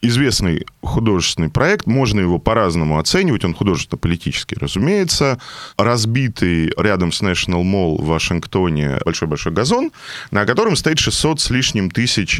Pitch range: 85-120 Hz